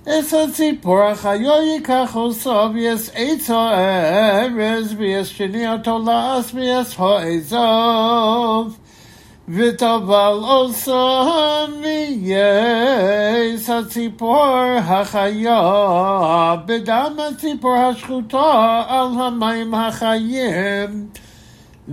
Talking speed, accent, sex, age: 55 wpm, American, male, 60-79